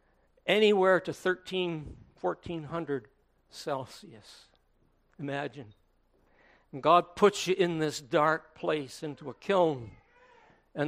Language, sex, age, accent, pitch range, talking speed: English, male, 60-79, American, 130-170 Hz, 100 wpm